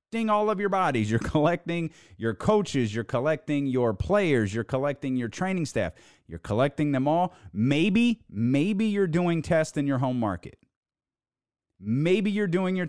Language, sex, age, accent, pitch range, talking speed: English, male, 30-49, American, 120-185 Hz, 160 wpm